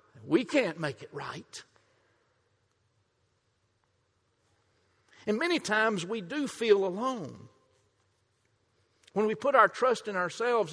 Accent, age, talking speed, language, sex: American, 60-79, 105 wpm, English, male